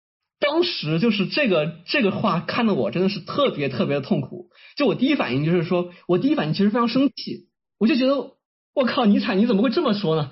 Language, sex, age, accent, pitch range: Chinese, male, 20-39, native, 180-245 Hz